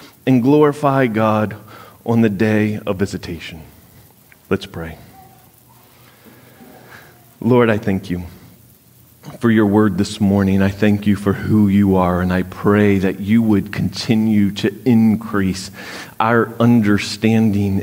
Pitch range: 100-115 Hz